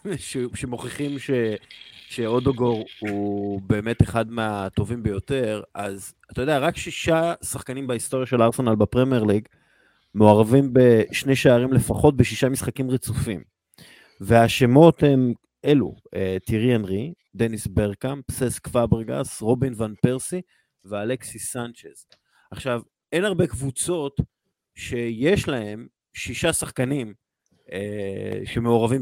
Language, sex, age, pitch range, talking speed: Hebrew, male, 30-49, 105-130 Hz, 105 wpm